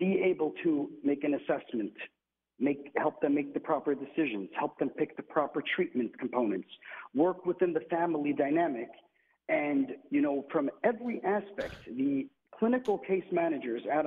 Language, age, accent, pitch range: English, 50-69, American, 150-220 Hz